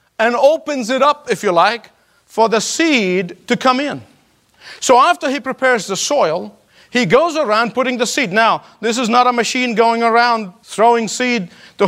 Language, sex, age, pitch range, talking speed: English, male, 50-69, 195-250 Hz, 180 wpm